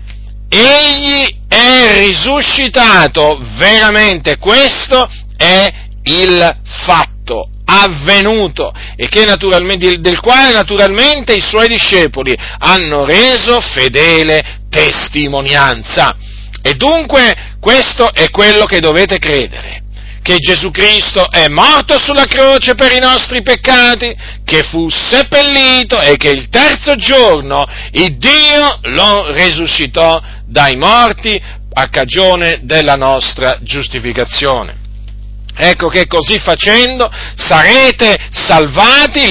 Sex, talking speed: male, 100 wpm